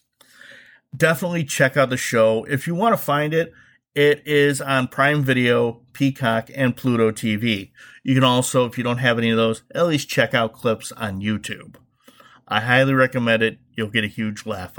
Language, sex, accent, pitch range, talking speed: English, male, American, 120-170 Hz, 185 wpm